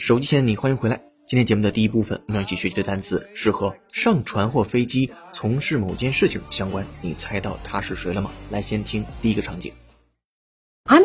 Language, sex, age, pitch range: Chinese, male, 30-49, 105-150 Hz